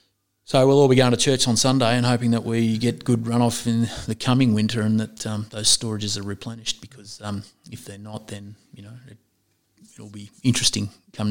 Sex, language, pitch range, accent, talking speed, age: male, English, 100-115 Hz, Australian, 210 wpm, 30-49